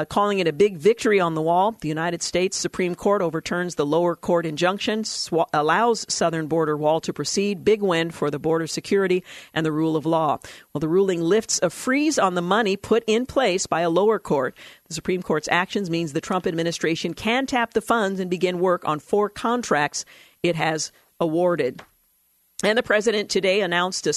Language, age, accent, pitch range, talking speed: English, 50-69, American, 165-205 Hz, 195 wpm